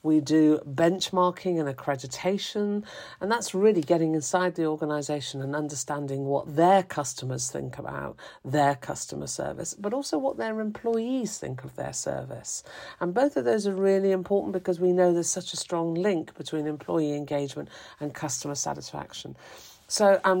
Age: 50-69